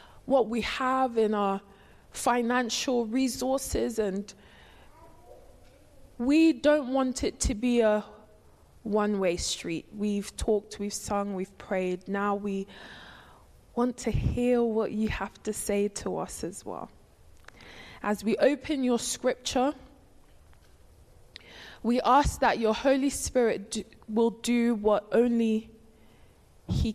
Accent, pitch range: British, 190-245 Hz